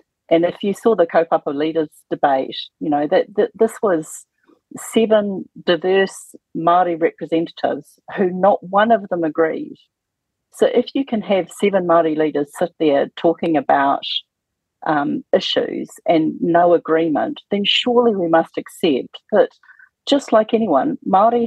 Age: 40-59